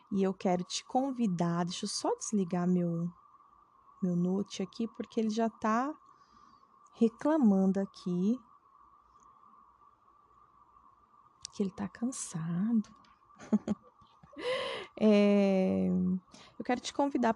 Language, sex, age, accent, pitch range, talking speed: Portuguese, female, 20-39, Brazilian, 190-250 Hz, 95 wpm